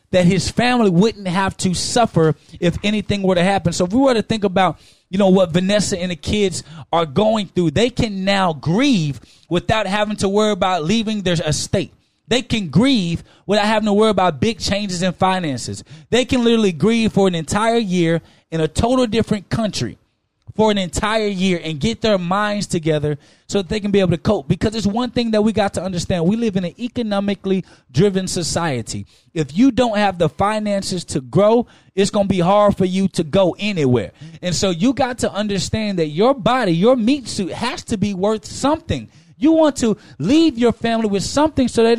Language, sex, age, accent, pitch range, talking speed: English, male, 20-39, American, 165-220 Hz, 205 wpm